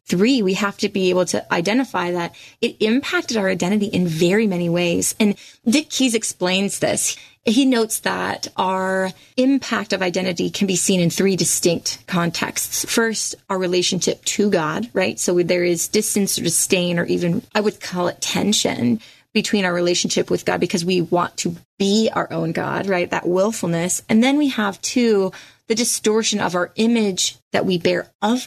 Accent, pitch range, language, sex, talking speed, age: American, 180-225 Hz, English, female, 180 wpm, 20-39